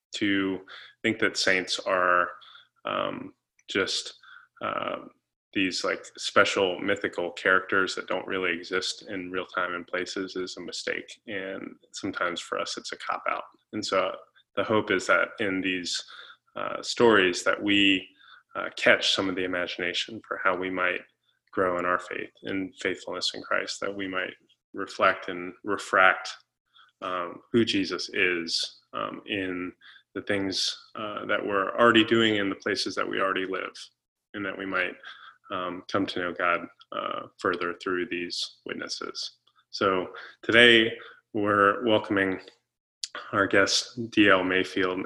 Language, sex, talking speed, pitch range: English, male, 145 wpm, 95-110 Hz